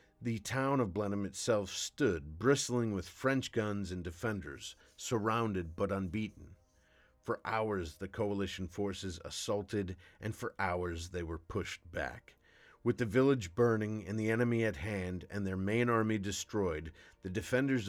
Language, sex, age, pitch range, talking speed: English, male, 40-59, 90-110 Hz, 150 wpm